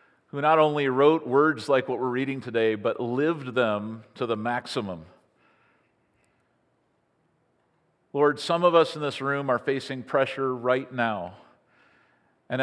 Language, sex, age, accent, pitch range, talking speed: English, male, 50-69, American, 120-150 Hz, 140 wpm